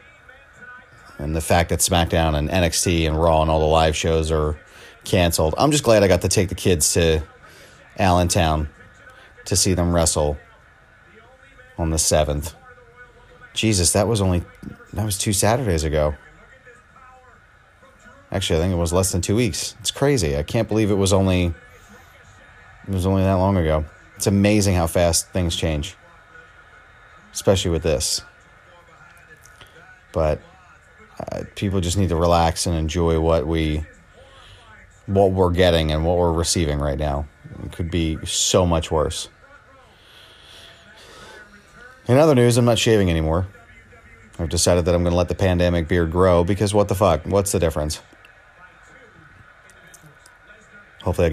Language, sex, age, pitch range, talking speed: English, male, 30-49, 80-100 Hz, 150 wpm